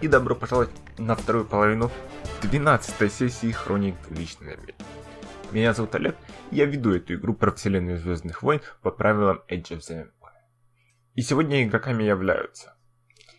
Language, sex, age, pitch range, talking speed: Russian, male, 20-39, 95-125 Hz, 140 wpm